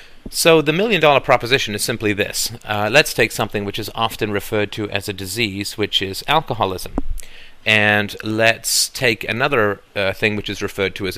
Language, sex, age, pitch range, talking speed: English, male, 40-59, 95-115 Hz, 175 wpm